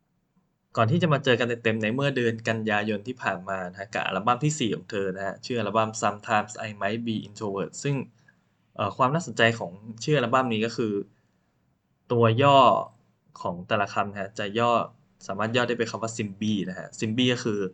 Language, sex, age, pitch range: Thai, male, 10-29, 100-130 Hz